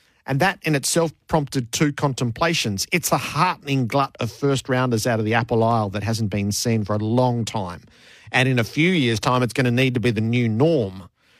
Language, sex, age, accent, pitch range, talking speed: English, male, 50-69, Australian, 115-150 Hz, 215 wpm